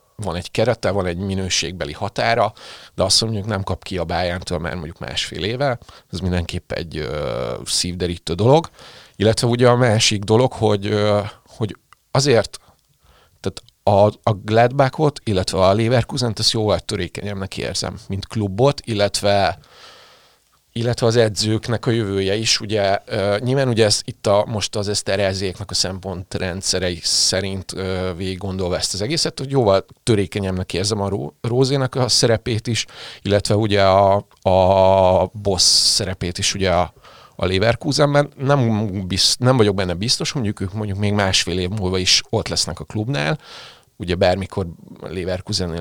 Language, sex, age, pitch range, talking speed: Hungarian, male, 30-49, 95-115 Hz, 150 wpm